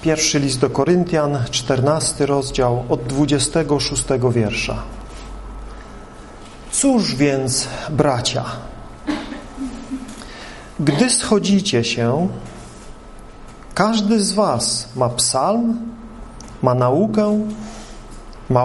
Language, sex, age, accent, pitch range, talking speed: Polish, male, 40-59, native, 115-185 Hz, 75 wpm